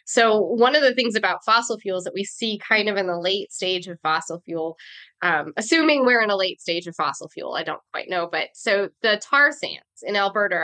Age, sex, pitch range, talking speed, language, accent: 20-39, female, 180-235 Hz, 230 wpm, English, American